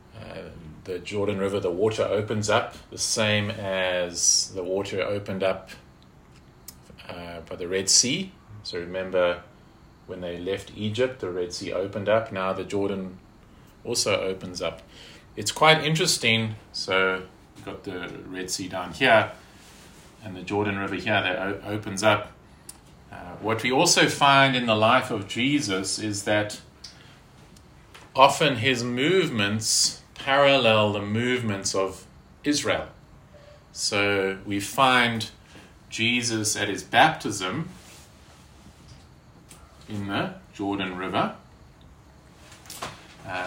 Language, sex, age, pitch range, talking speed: English, male, 30-49, 95-115 Hz, 120 wpm